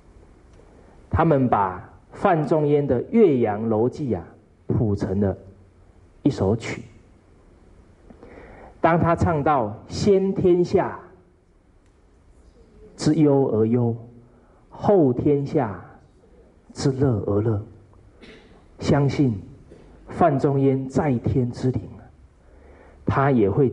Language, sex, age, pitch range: Chinese, male, 40-59, 90-130 Hz